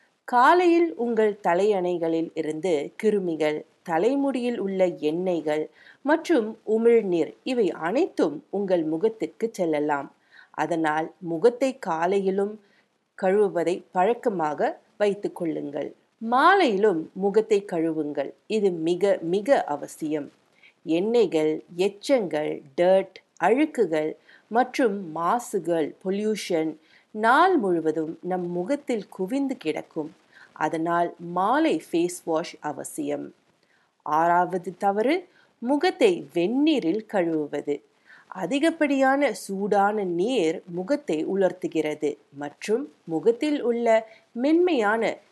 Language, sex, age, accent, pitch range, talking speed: Tamil, female, 50-69, native, 165-245 Hz, 80 wpm